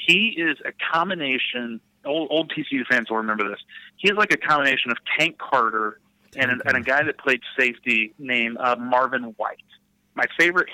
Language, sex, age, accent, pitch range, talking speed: English, male, 30-49, American, 125-175 Hz, 185 wpm